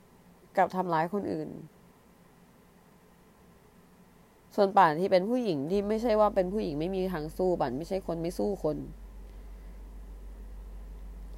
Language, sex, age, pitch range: Thai, female, 20-39, 160-200 Hz